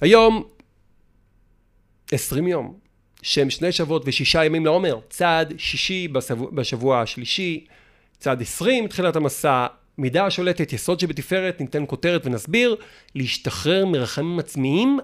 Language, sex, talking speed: Hebrew, male, 110 wpm